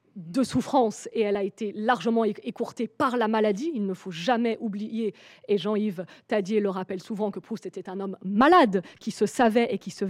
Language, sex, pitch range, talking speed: French, female, 210-280 Hz, 200 wpm